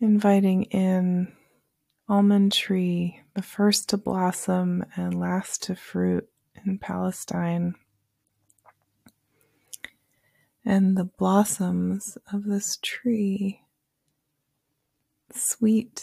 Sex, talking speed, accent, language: female, 80 wpm, American, English